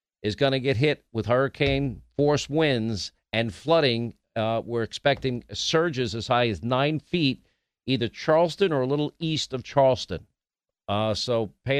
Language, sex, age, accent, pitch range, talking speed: English, male, 50-69, American, 110-145 Hz, 160 wpm